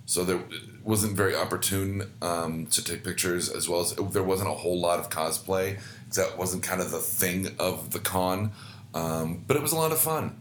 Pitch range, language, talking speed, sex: 90-110 Hz, English, 220 wpm, male